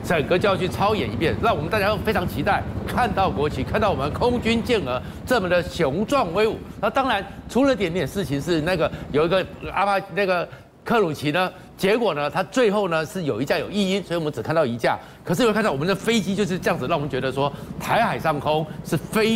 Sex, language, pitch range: male, Chinese, 180-230 Hz